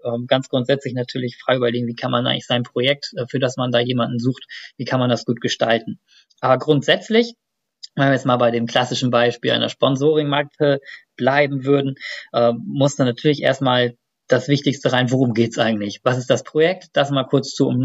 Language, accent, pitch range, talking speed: German, German, 125-150 Hz, 190 wpm